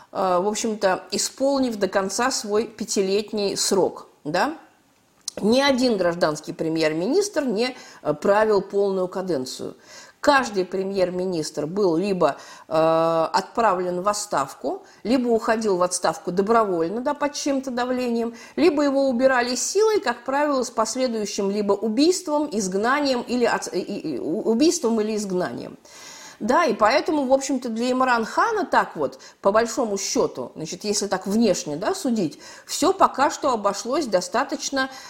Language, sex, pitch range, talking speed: Russian, female, 190-270 Hz, 120 wpm